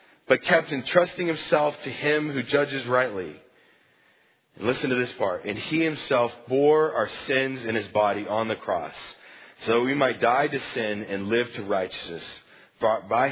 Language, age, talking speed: English, 40-59, 170 wpm